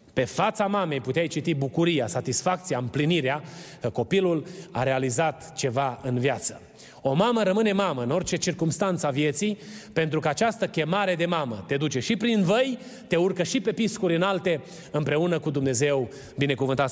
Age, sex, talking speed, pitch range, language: 30-49, male, 160 wpm, 155-205 Hz, Romanian